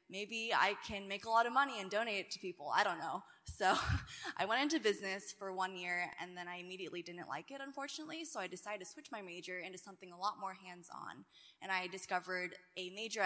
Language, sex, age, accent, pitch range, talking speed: English, female, 10-29, American, 180-225 Hz, 225 wpm